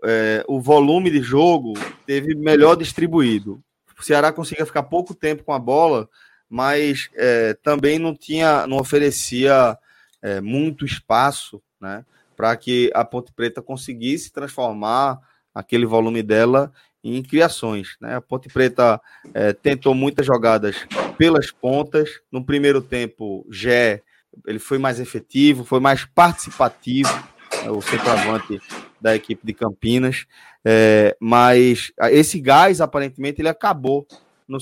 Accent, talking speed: Brazilian, 125 wpm